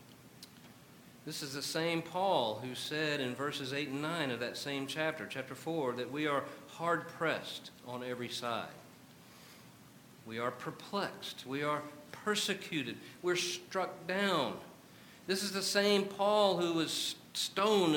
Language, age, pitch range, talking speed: English, 50-69, 135-185 Hz, 140 wpm